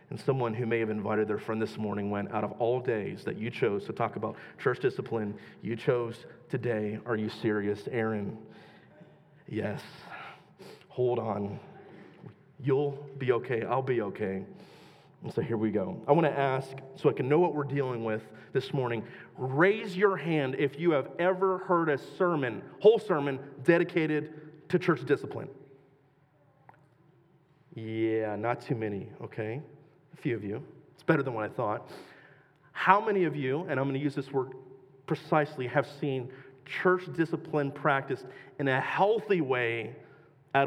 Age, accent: 30-49, American